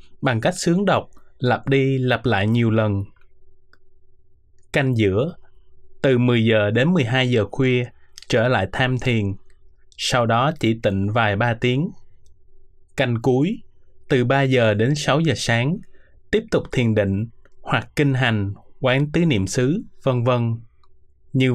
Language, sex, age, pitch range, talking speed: Vietnamese, male, 20-39, 105-140 Hz, 150 wpm